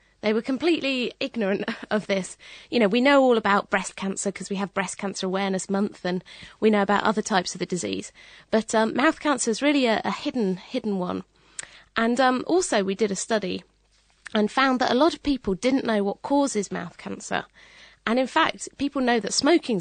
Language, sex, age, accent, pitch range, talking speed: English, female, 30-49, British, 195-250 Hz, 205 wpm